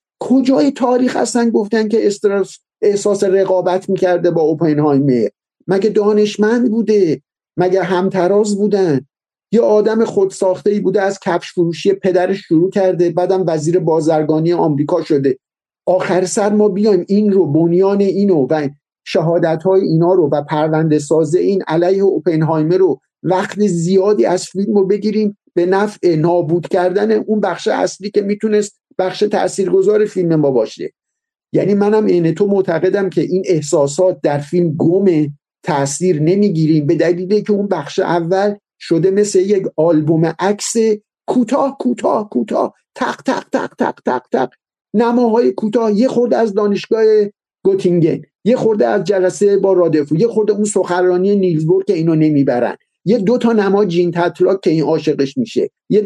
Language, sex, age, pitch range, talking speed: Persian, male, 50-69, 170-210 Hz, 150 wpm